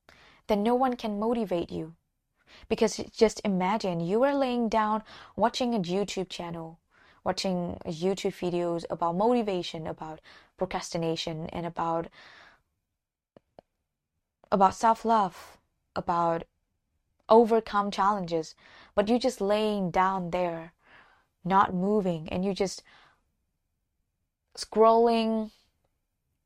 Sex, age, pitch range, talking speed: female, 20-39, 165-215 Hz, 100 wpm